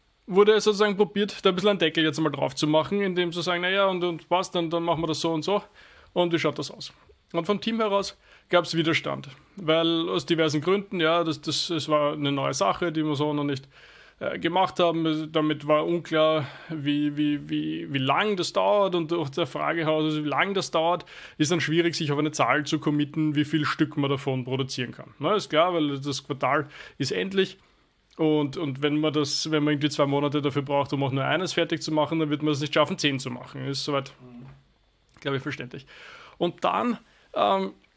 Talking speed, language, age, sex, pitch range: 225 wpm, German, 30-49, male, 150-185 Hz